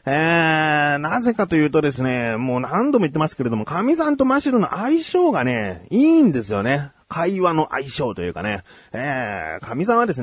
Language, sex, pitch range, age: Japanese, male, 135-220 Hz, 40-59